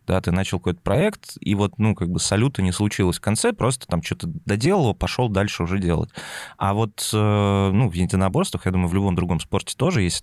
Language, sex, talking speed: Russian, male, 210 wpm